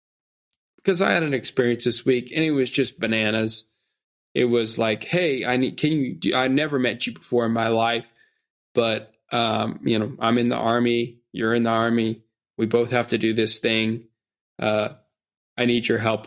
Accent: American